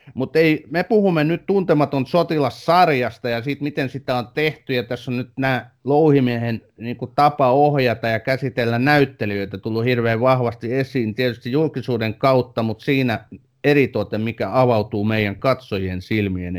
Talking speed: 145 wpm